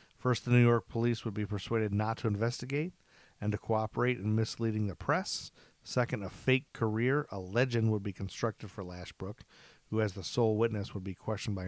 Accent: American